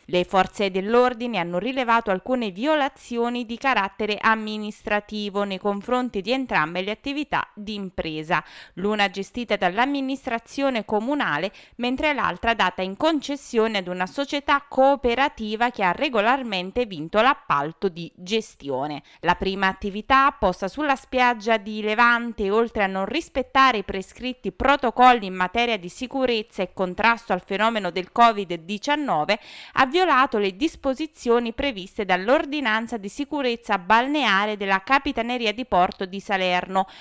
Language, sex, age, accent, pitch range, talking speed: Italian, female, 20-39, native, 200-260 Hz, 125 wpm